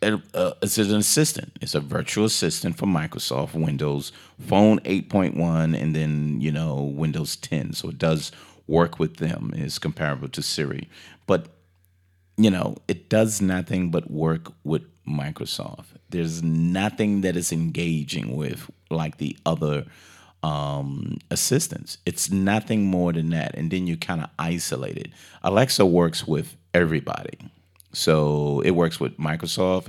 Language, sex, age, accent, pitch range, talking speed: English, male, 30-49, American, 80-95 Hz, 145 wpm